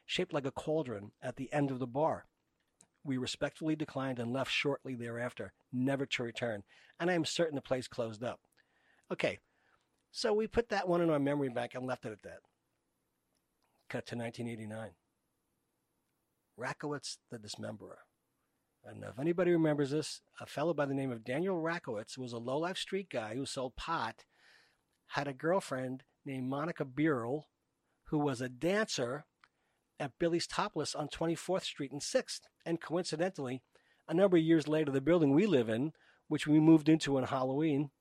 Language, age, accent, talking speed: English, 40-59, American, 165 wpm